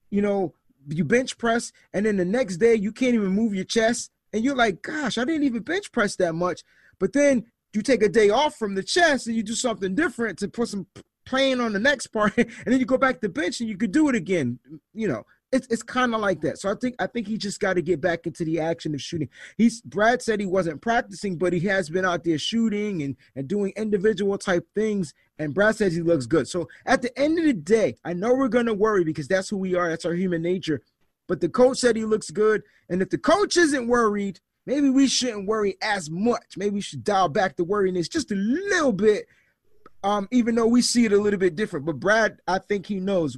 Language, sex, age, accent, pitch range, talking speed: English, male, 30-49, American, 175-230 Hz, 250 wpm